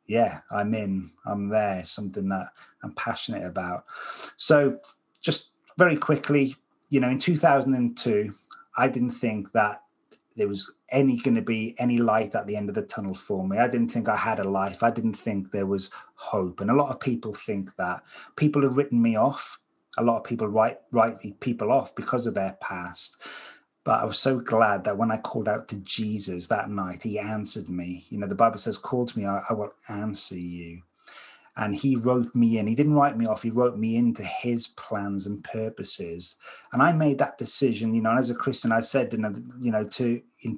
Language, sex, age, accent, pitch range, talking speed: English, male, 30-49, British, 105-125 Hz, 205 wpm